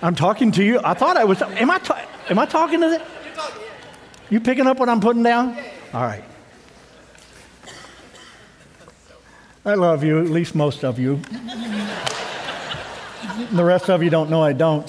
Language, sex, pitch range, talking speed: English, male, 155-215 Hz, 170 wpm